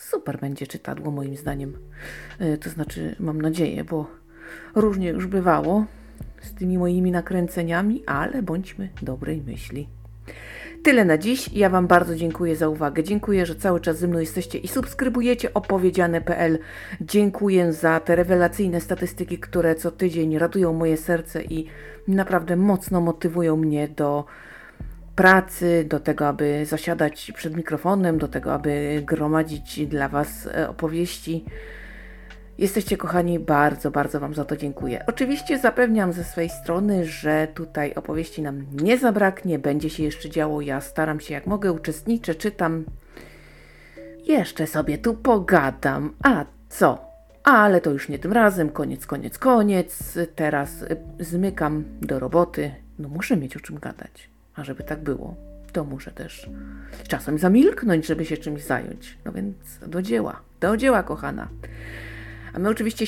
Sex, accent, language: female, native, Polish